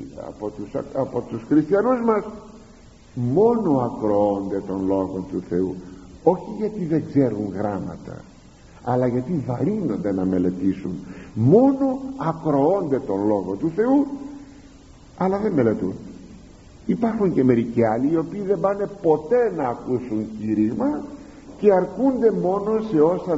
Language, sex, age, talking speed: Greek, male, 50-69, 125 wpm